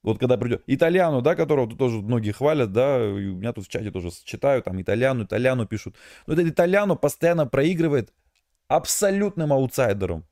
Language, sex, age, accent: Russian, male, 20-39, native